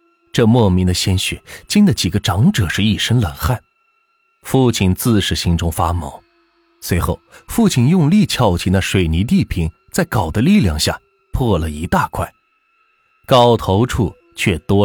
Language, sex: Chinese, male